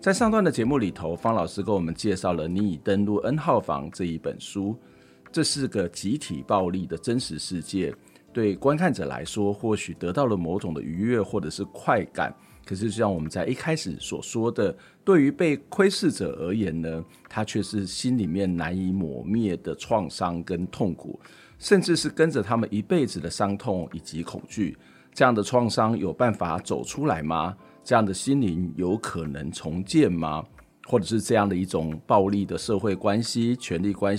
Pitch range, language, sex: 90-120 Hz, Chinese, male